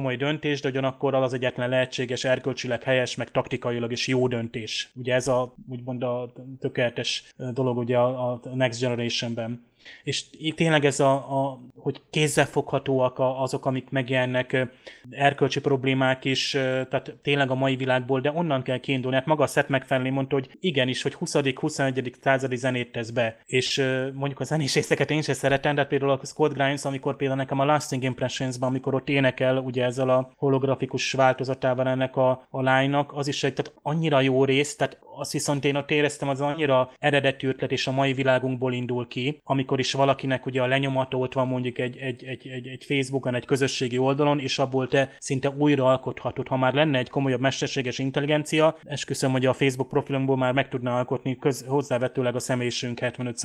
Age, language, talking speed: 20-39, Hungarian, 175 wpm